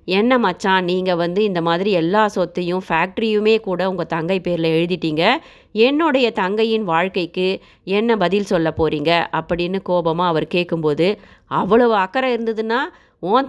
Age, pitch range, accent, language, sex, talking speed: 20-39, 170-225 Hz, native, Tamil, female, 130 wpm